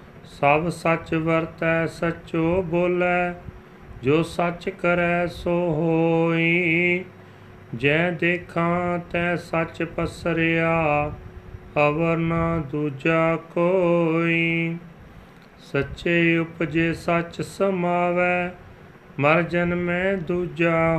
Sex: male